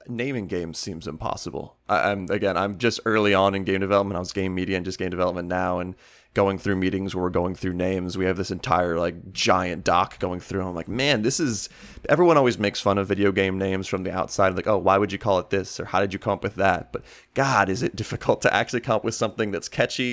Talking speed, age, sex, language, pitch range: 255 wpm, 20-39, male, English, 95-110 Hz